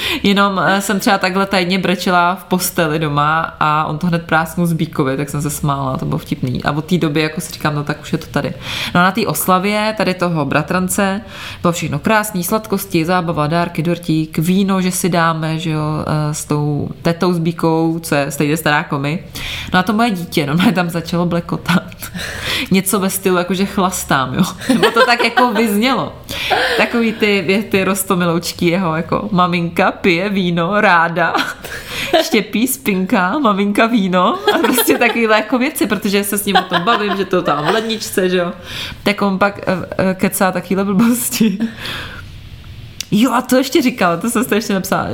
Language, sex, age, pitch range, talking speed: Czech, female, 20-39, 160-200 Hz, 185 wpm